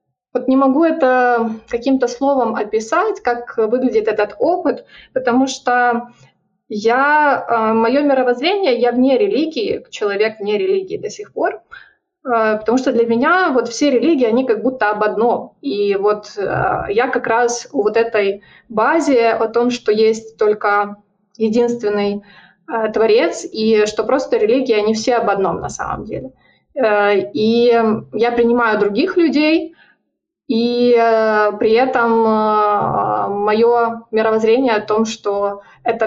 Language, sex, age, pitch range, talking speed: Ukrainian, female, 20-39, 220-265 Hz, 130 wpm